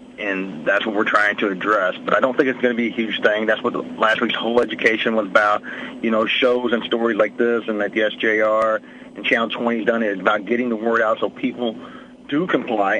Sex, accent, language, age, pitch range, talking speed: male, American, English, 40-59, 110-125 Hz, 250 wpm